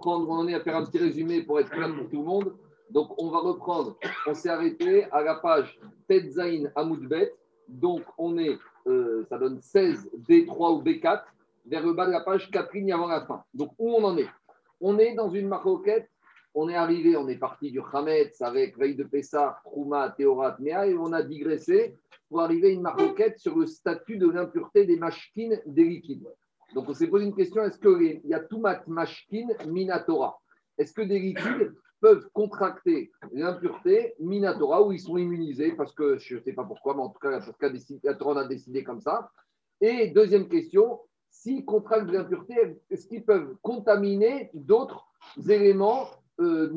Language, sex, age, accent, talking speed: French, male, 50-69, French, 185 wpm